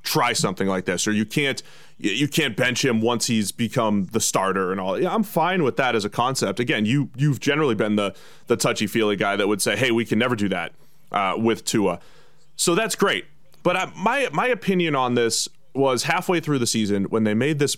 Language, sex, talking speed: English, male, 215 wpm